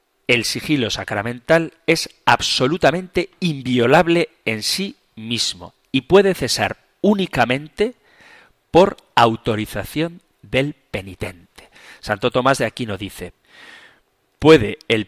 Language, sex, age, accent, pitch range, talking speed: Spanish, male, 40-59, Spanish, 105-140 Hz, 95 wpm